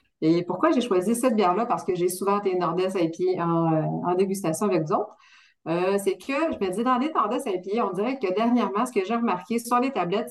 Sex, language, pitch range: female, French, 175-220 Hz